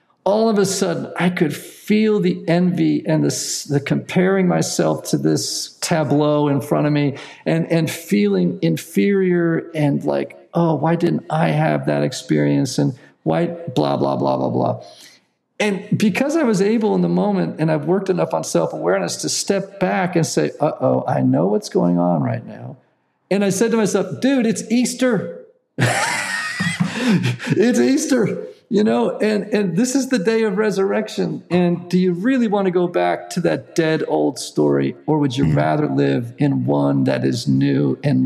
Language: English